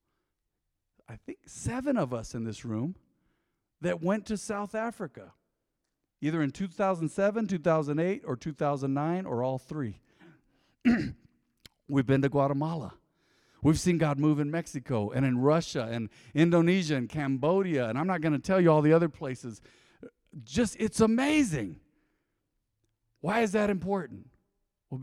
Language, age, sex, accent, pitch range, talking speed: English, 50-69, male, American, 125-175 Hz, 140 wpm